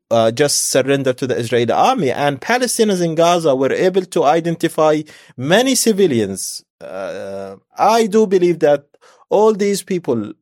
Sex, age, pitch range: male, 30-49, 115-155 Hz